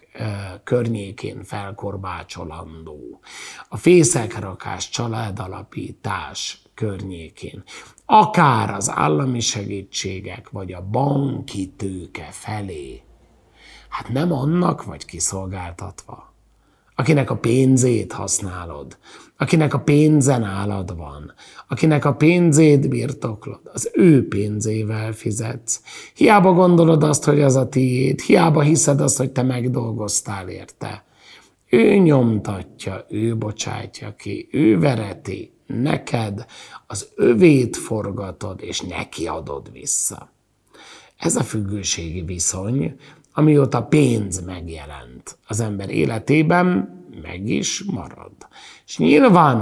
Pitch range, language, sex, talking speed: 95-140 Hz, Hungarian, male, 100 wpm